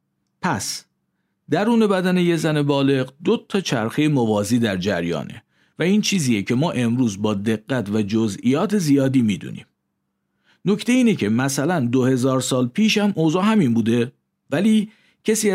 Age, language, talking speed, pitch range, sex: 50-69, Persian, 145 wpm, 115-150 Hz, male